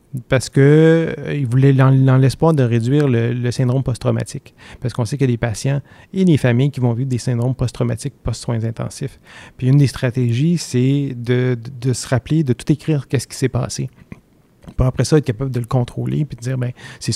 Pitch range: 120-135 Hz